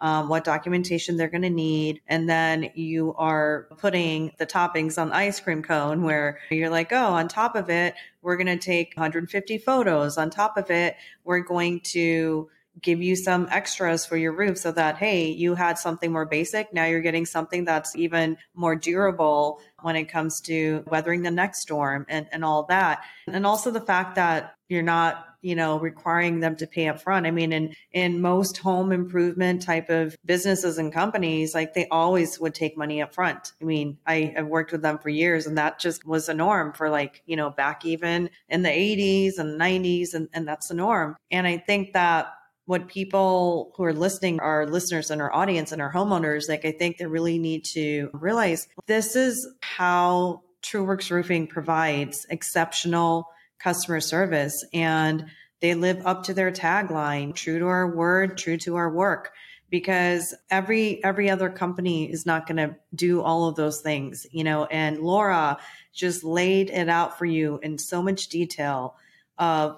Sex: female